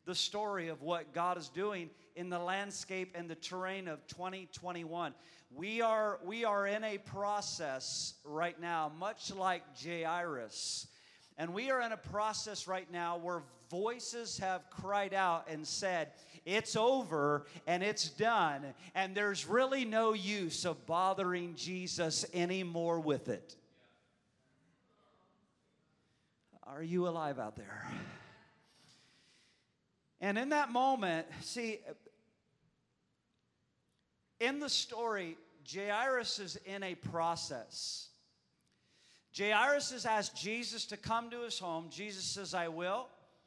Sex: male